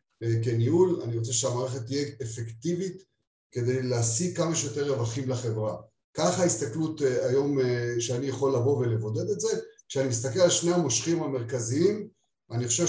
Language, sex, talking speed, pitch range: Hebrew, male, 135 wpm, 120-150 Hz